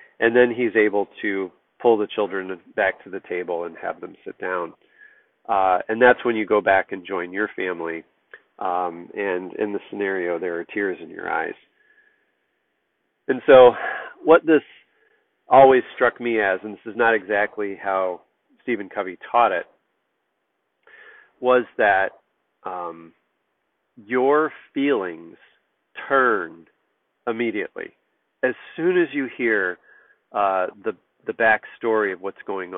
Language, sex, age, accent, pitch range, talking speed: English, male, 40-59, American, 100-150 Hz, 140 wpm